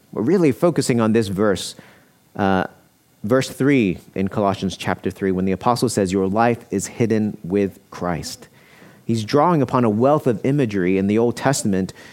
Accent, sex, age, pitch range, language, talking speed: American, male, 40-59, 95-125 Hz, English, 170 wpm